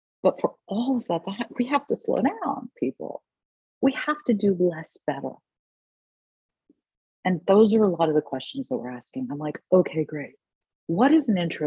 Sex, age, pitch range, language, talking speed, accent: female, 40-59, 155-200 Hz, English, 190 wpm, American